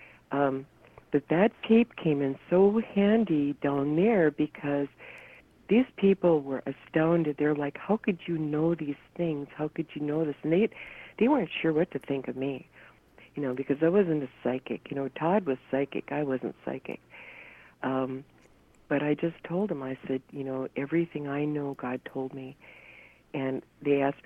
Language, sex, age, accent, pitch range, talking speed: English, female, 60-79, American, 130-150 Hz, 180 wpm